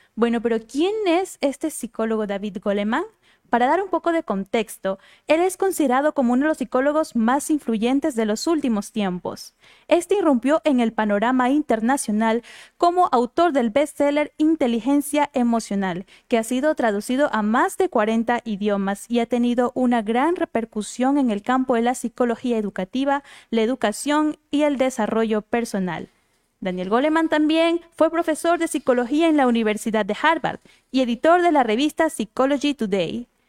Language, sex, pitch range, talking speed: Spanish, female, 225-310 Hz, 155 wpm